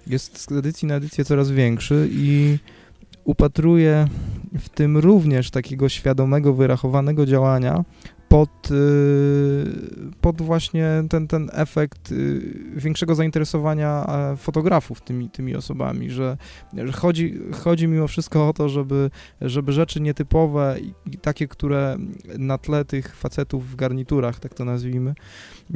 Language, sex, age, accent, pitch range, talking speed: Polish, male, 20-39, native, 125-150 Hz, 120 wpm